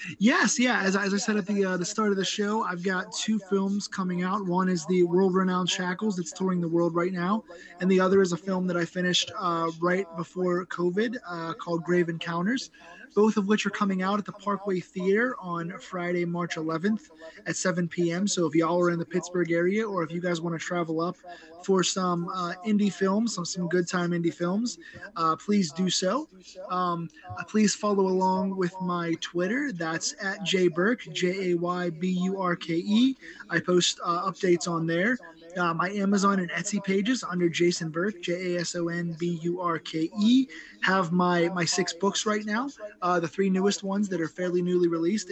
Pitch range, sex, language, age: 175-195 Hz, male, English, 20-39